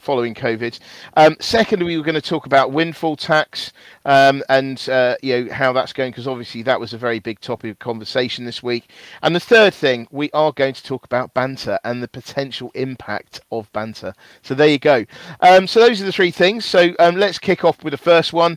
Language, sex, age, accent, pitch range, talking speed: English, male, 40-59, British, 125-150 Hz, 225 wpm